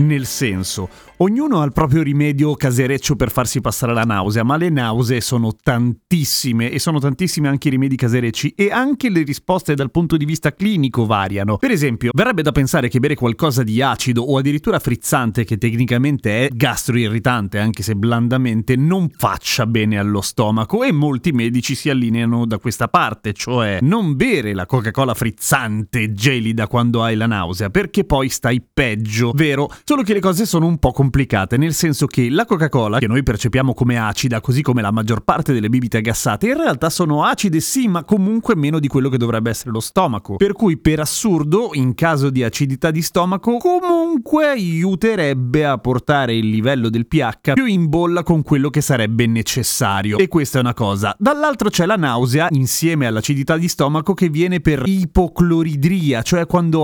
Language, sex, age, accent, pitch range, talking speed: Italian, male, 30-49, native, 120-165 Hz, 180 wpm